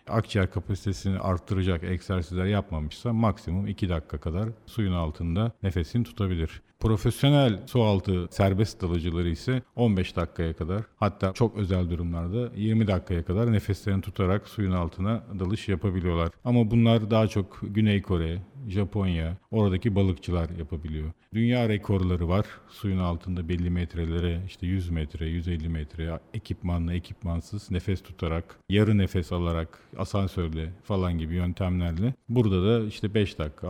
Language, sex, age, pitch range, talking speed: Turkish, male, 50-69, 90-110 Hz, 130 wpm